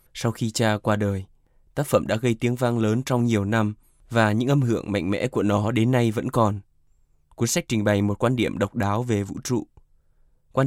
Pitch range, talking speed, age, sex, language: 100-125 Hz, 225 wpm, 20-39, male, Vietnamese